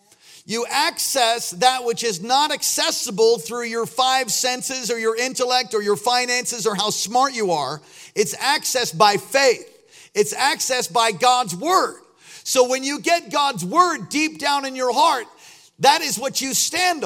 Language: English